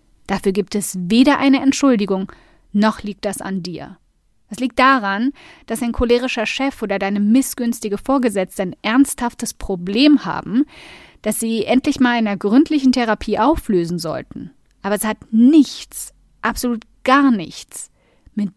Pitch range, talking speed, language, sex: 195-250 Hz, 140 wpm, German, female